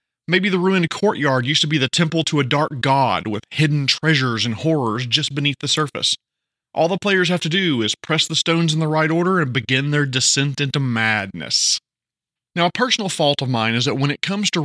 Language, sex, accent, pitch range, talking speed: English, male, American, 130-170 Hz, 220 wpm